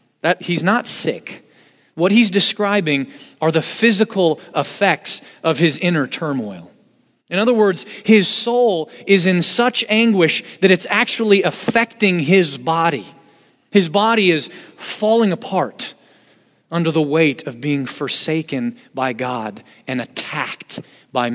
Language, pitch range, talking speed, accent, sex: English, 140-210 Hz, 125 wpm, American, male